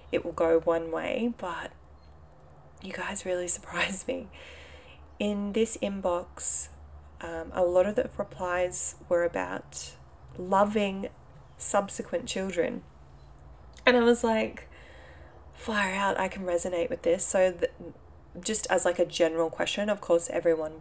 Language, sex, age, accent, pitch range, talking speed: English, female, 20-39, Australian, 160-195 Hz, 135 wpm